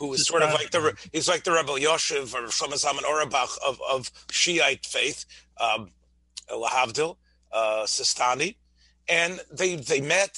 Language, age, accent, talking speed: English, 40-59, American, 150 wpm